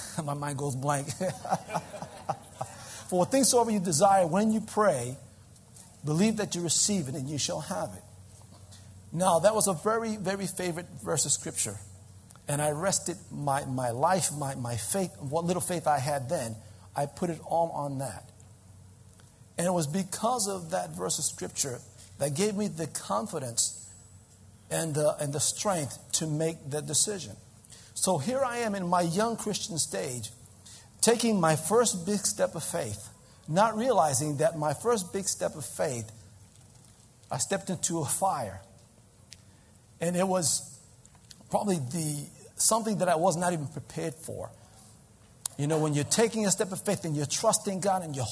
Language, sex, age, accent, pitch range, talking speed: English, male, 50-69, American, 120-195 Hz, 170 wpm